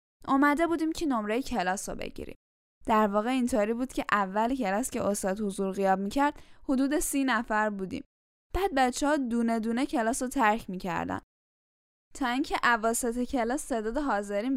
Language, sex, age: Persian, female, 10-29